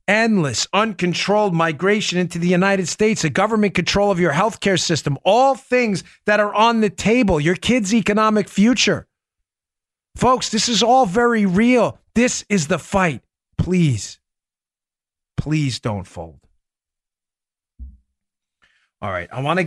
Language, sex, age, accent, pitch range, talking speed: English, male, 40-59, American, 110-190 Hz, 135 wpm